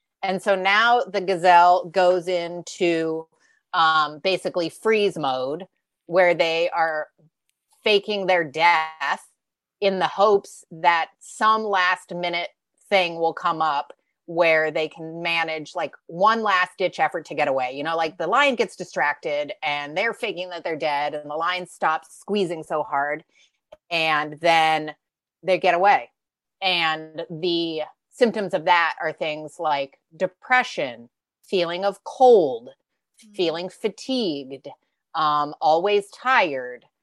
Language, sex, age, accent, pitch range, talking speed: English, female, 30-49, American, 155-195 Hz, 135 wpm